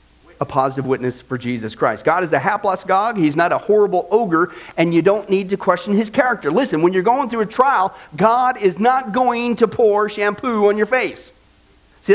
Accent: American